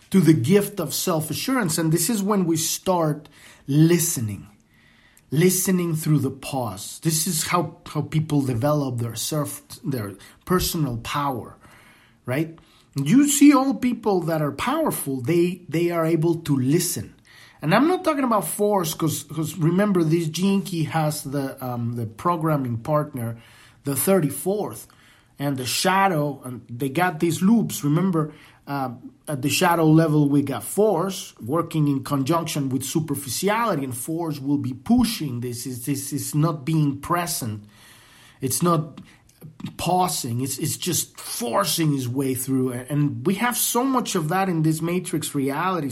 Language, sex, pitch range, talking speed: English, male, 135-180 Hz, 150 wpm